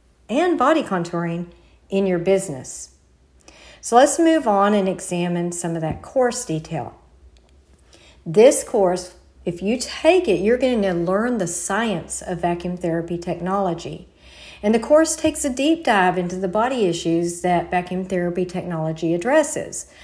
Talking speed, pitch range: 145 wpm, 175-225 Hz